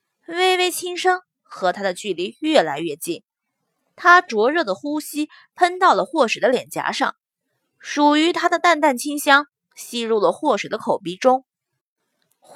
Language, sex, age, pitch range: Chinese, female, 20-39, 240-345 Hz